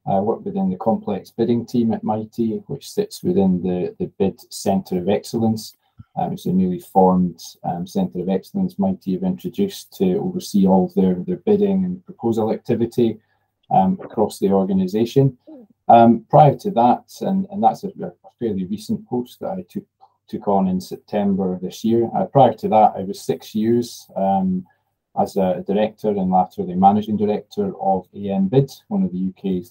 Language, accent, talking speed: English, British, 180 wpm